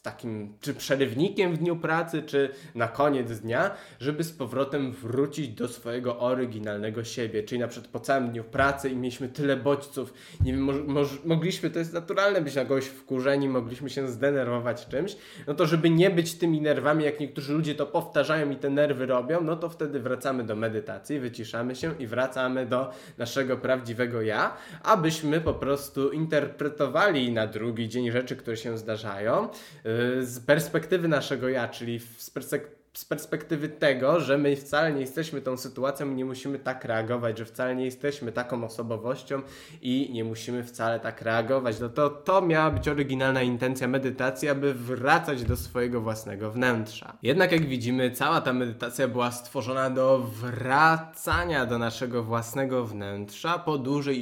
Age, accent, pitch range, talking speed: 20-39, native, 120-145 Hz, 165 wpm